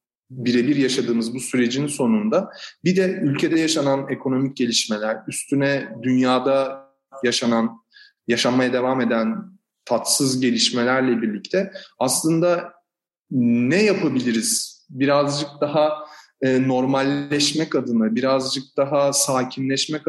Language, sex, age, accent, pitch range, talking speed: Turkish, male, 30-49, native, 130-175 Hz, 90 wpm